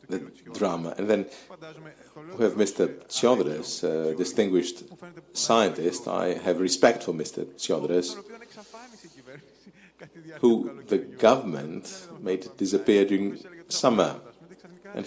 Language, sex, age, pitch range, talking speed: Greek, male, 50-69, 90-150 Hz, 110 wpm